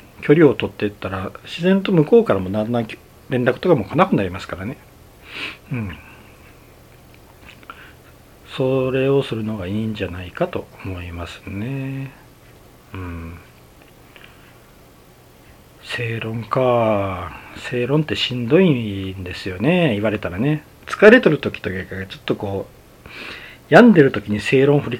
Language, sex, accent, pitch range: Japanese, male, native, 100-130 Hz